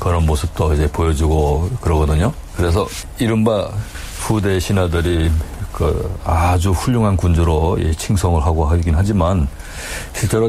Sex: male